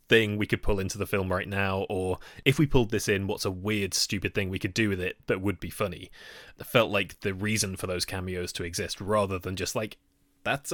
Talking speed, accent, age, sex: 245 wpm, British, 20-39, male